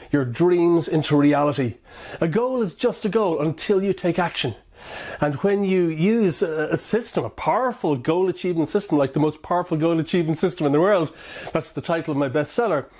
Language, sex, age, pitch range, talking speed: English, male, 30-49, 150-200 Hz, 190 wpm